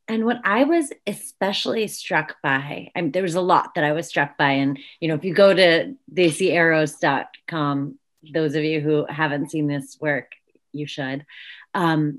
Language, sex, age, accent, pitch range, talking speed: English, female, 30-49, American, 155-215 Hz, 180 wpm